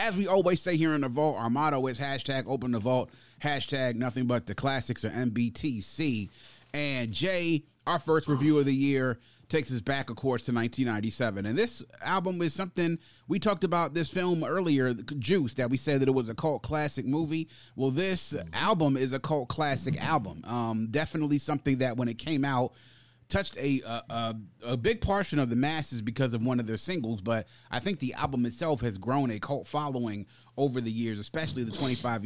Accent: American